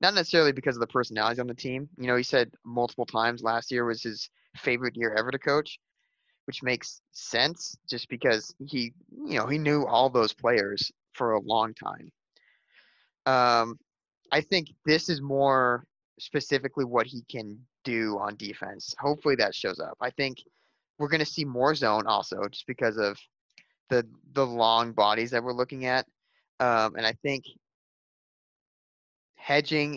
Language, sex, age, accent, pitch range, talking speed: English, male, 20-39, American, 115-145 Hz, 165 wpm